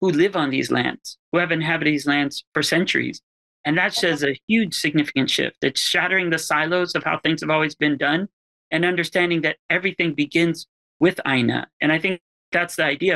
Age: 30-49